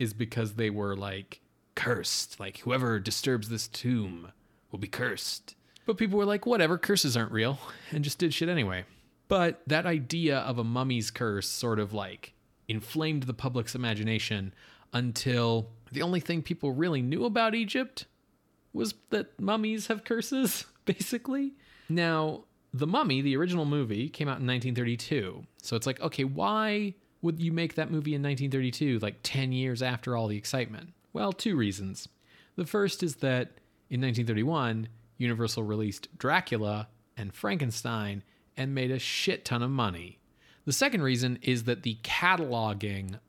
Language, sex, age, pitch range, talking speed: English, male, 20-39, 110-155 Hz, 155 wpm